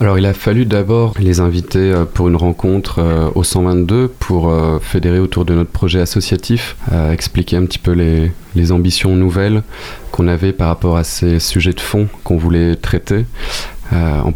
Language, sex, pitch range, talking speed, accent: French, male, 85-100 Hz, 165 wpm, French